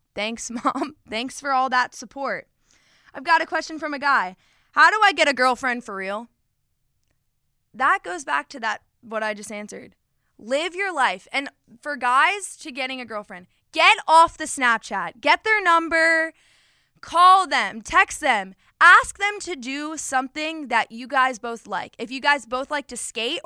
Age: 20-39